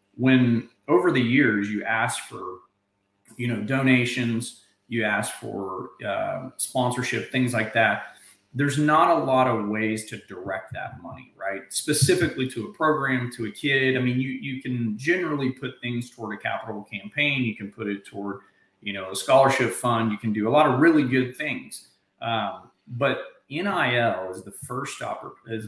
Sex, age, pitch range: male, 40-59, 105-130 Hz